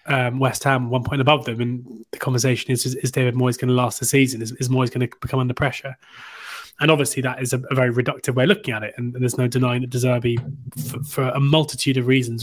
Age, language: 20-39, English